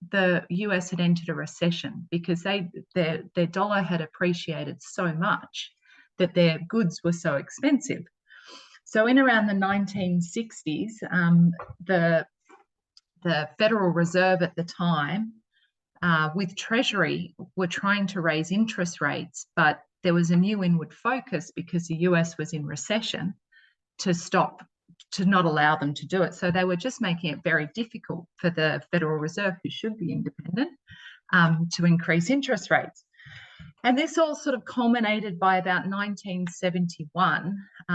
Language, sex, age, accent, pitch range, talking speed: English, female, 30-49, Australian, 170-200 Hz, 150 wpm